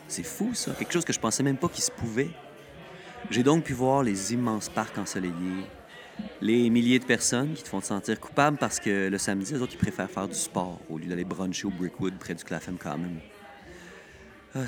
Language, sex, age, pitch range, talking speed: French, male, 40-59, 95-140 Hz, 215 wpm